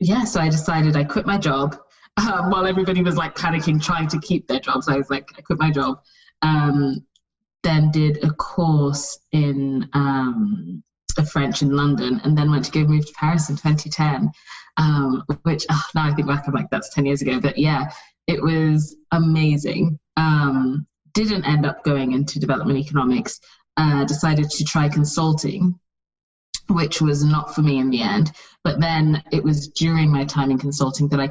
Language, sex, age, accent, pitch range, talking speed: English, female, 20-39, British, 135-155 Hz, 190 wpm